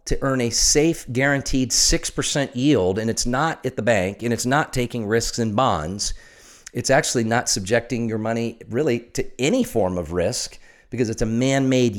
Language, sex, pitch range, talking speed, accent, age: English, male, 105-130 Hz, 180 wpm, American, 40-59